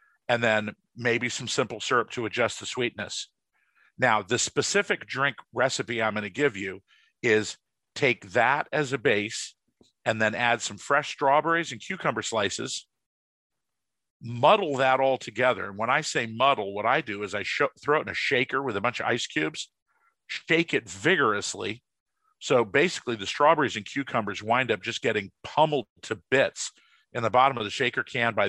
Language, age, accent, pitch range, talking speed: English, 50-69, American, 110-140 Hz, 175 wpm